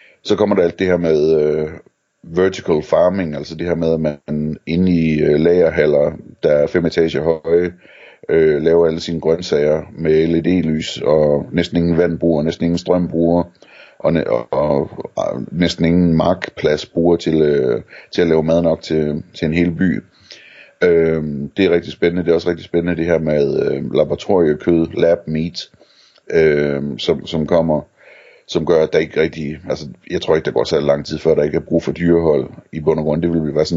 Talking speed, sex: 195 wpm, male